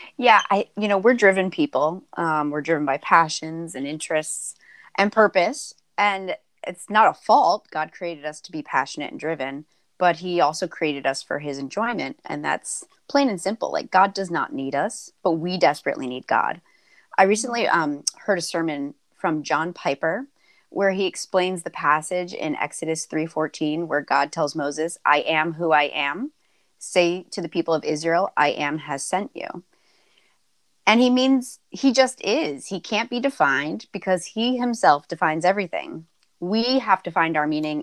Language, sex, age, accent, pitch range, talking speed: English, female, 30-49, American, 150-195 Hz, 175 wpm